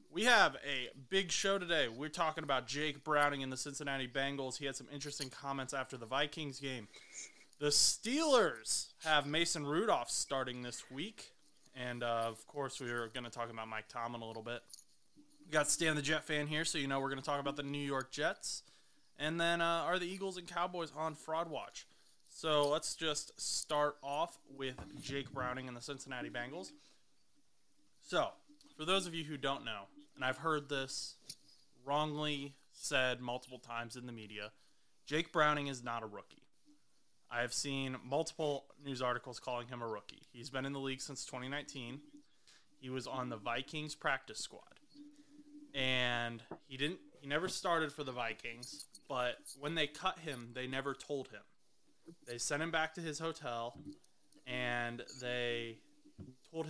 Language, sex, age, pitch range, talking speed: English, male, 20-39, 125-155 Hz, 175 wpm